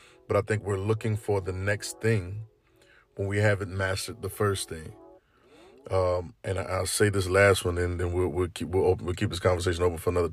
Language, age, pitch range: English, 20-39, 95-110 Hz